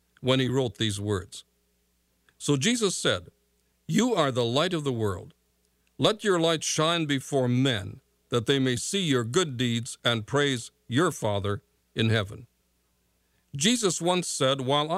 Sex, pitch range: male, 100-150 Hz